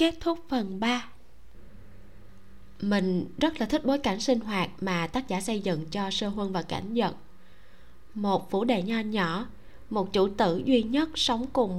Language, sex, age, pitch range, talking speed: Vietnamese, female, 20-39, 185-255 Hz, 180 wpm